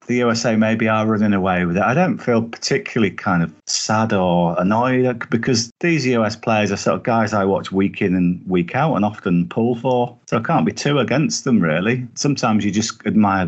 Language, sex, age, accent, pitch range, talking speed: English, male, 30-49, British, 95-115 Hz, 215 wpm